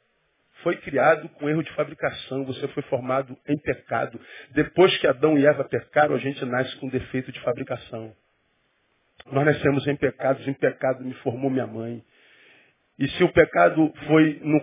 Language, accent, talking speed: Portuguese, Brazilian, 165 wpm